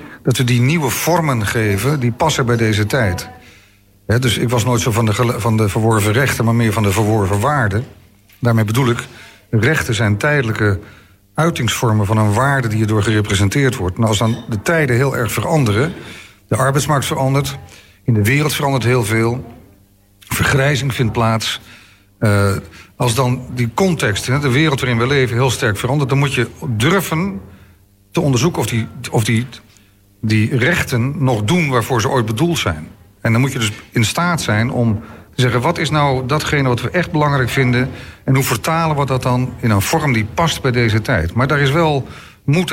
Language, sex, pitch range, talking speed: Dutch, male, 110-140 Hz, 190 wpm